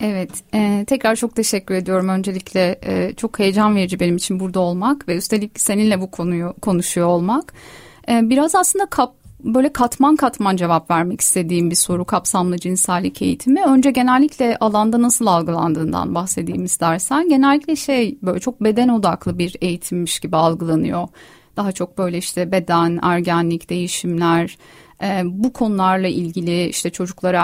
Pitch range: 175-230 Hz